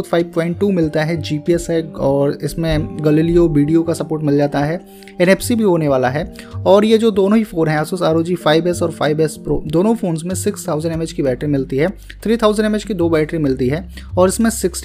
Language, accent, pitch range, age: Hindi, native, 145-180 Hz, 20-39